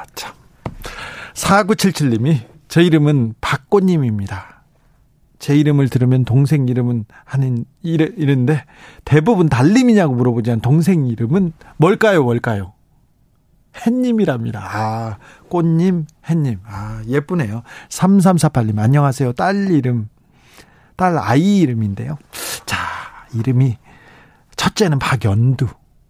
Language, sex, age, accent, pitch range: Korean, male, 40-59, native, 120-165 Hz